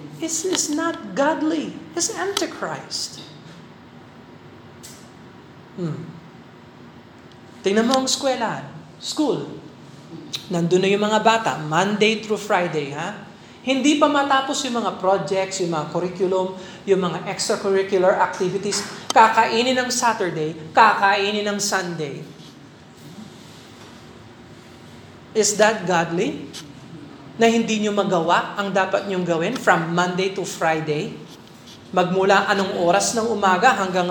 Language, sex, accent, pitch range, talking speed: Filipino, male, native, 180-225 Hz, 105 wpm